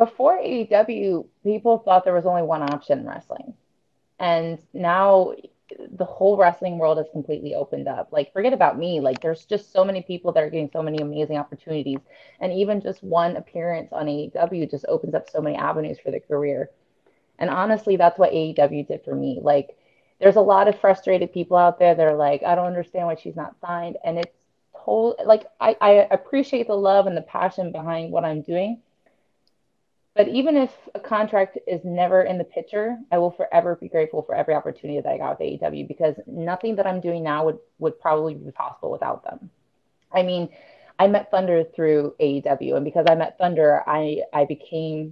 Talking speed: 195 wpm